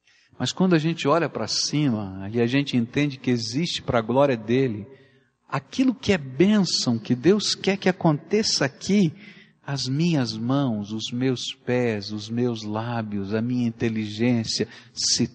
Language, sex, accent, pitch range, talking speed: Portuguese, male, Brazilian, 115-180 Hz, 155 wpm